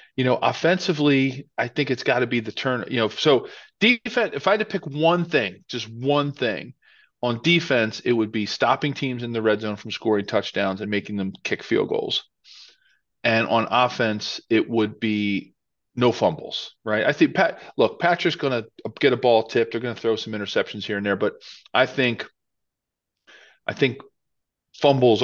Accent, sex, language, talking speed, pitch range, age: American, male, English, 190 wpm, 110-130 Hz, 40-59